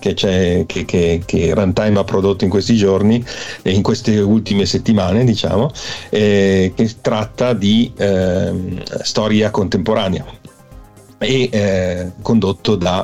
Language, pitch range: Italian, 100-120 Hz